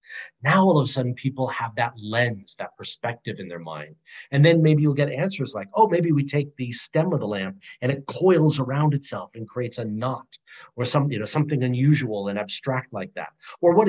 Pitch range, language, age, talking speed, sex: 120-155 Hz, English, 40-59, 205 wpm, male